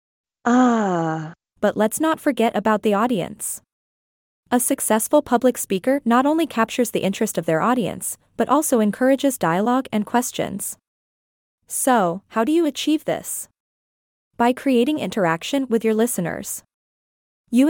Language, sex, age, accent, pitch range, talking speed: English, female, 20-39, American, 200-250 Hz, 130 wpm